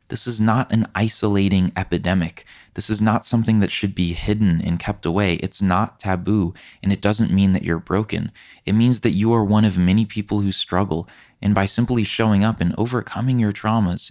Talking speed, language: 200 wpm, English